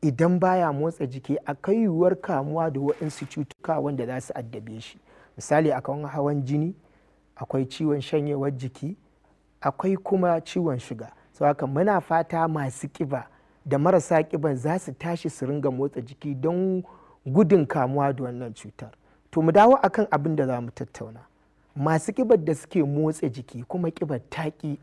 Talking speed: 145 wpm